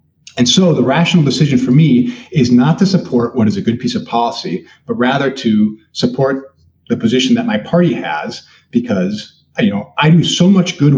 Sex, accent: male, American